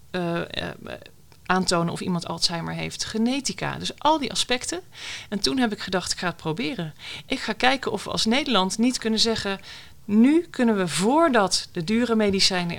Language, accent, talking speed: Dutch, Dutch, 180 wpm